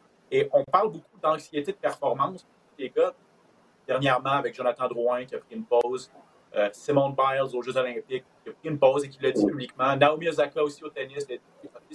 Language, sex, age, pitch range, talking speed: French, male, 40-59, 140-215 Hz, 200 wpm